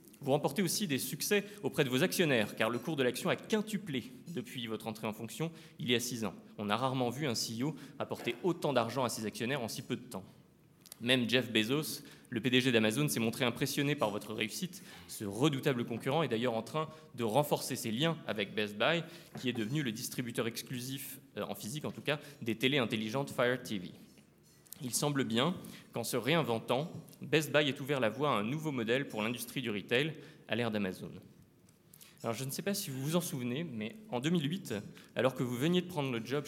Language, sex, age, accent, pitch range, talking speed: French, male, 20-39, French, 120-160 Hz, 210 wpm